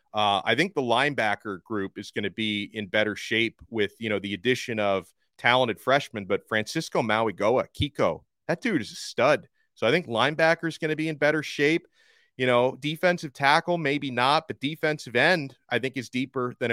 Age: 30-49